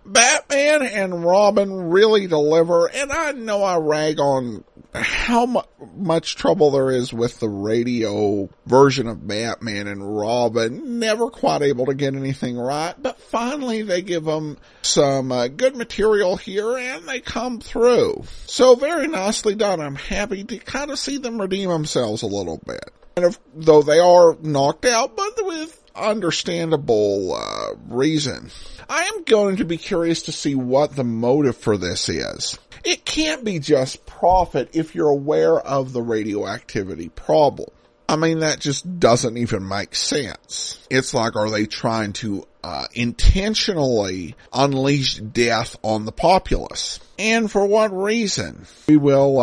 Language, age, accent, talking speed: English, 50-69, American, 150 wpm